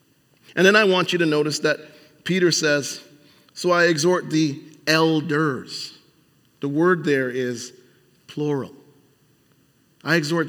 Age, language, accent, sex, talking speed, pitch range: 40-59, English, American, male, 125 wpm, 155-210 Hz